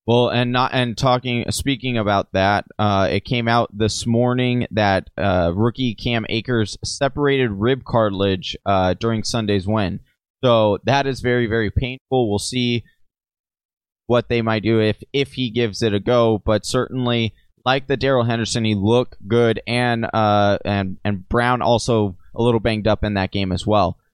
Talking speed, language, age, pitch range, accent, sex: 170 wpm, English, 20-39, 110-135 Hz, American, male